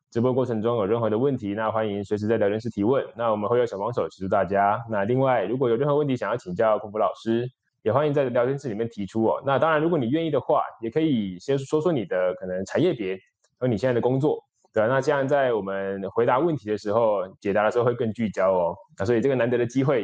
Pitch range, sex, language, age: 110-145 Hz, male, Chinese, 20-39